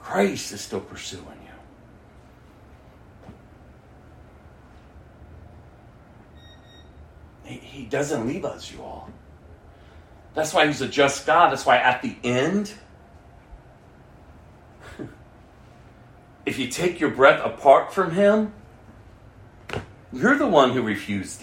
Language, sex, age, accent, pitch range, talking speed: English, male, 40-59, American, 105-170 Hz, 100 wpm